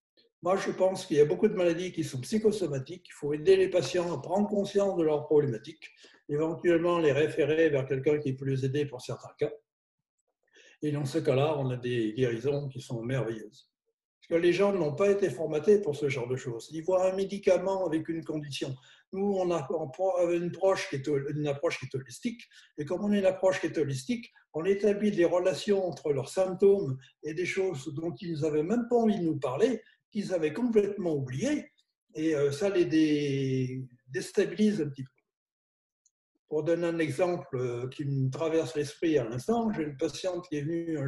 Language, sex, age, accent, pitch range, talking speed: French, male, 60-79, French, 145-195 Hz, 190 wpm